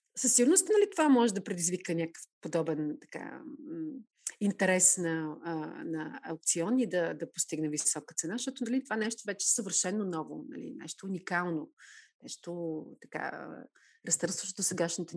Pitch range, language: 175-225 Hz, Bulgarian